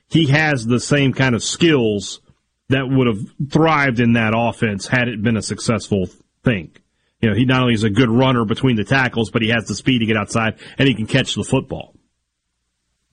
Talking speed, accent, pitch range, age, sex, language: 210 wpm, American, 105-155 Hz, 40-59, male, English